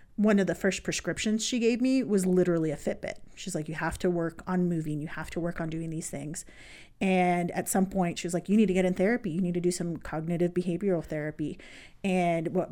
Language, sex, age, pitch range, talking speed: English, female, 30-49, 165-195 Hz, 240 wpm